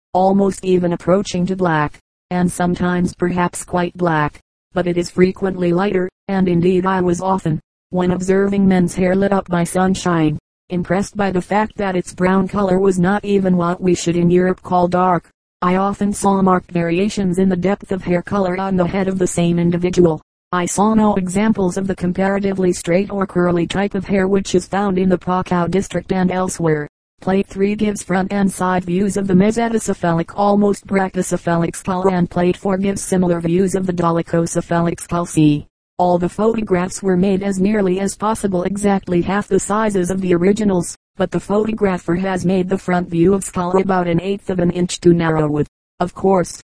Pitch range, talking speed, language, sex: 175-195 Hz, 190 wpm, English, female